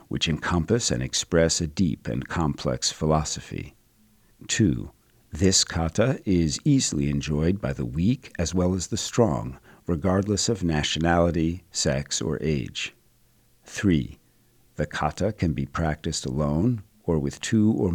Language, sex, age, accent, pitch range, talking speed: English, male, 50-69, American, 80-105 Hz, 135 wpm